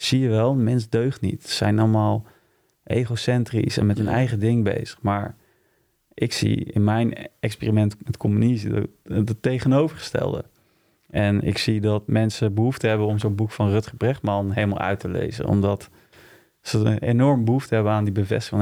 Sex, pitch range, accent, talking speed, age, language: male, 100-115 Hz, Dutch, 175 wpm, 30-49, Dutch